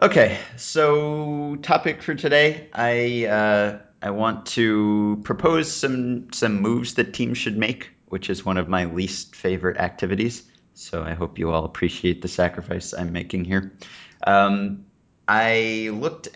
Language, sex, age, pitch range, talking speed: English, male, 30-49, 90-115 Hz, 145 wpm